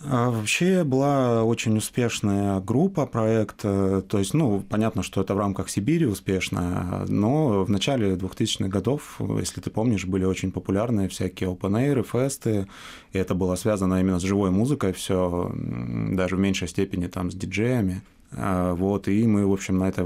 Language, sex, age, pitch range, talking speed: Russian, male, 20-39, 95-110 Hz, 160 wpm